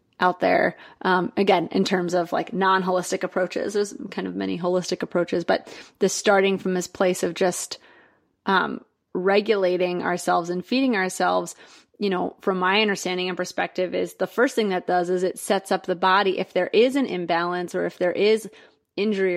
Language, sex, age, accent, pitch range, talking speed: English, female, 30-49, American, 180-205 Hz, 185 wpm